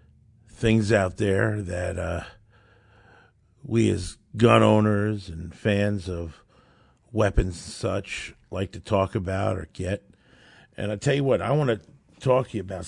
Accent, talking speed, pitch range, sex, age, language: American, 155 wpm, 90-115 Hz, male, 50-69, English